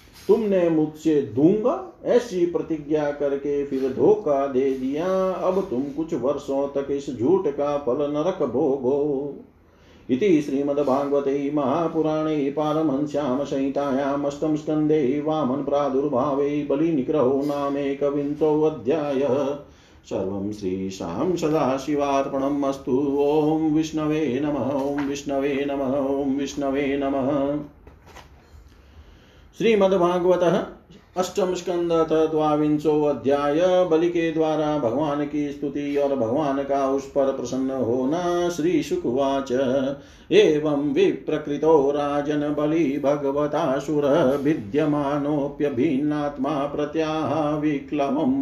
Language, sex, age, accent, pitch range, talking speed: Hindi, male, 50-69, native, 140-155 Hz, 85 wpm